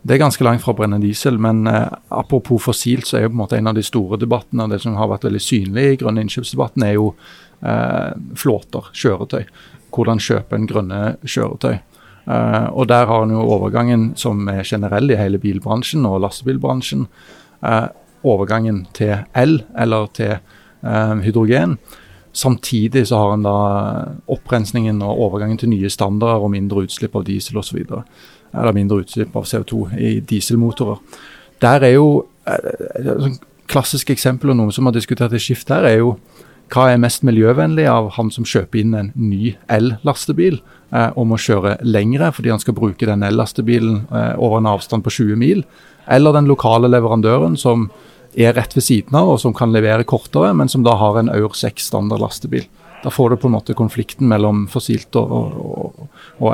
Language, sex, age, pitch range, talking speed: English, male, 30-49, 105-125 Hz, 180 wpm